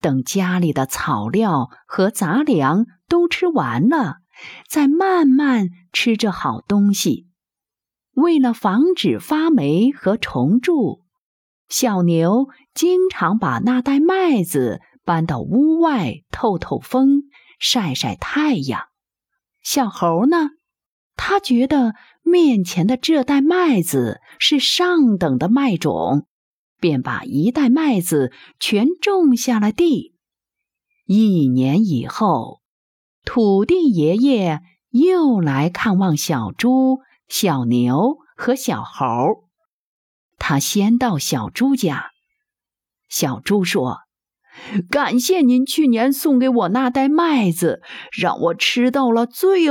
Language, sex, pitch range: Chinese, female, 195-295 Hz